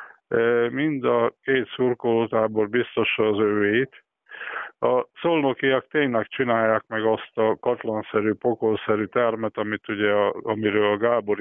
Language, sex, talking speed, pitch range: Hungarian, male, 120 wpm, 110-125 Hz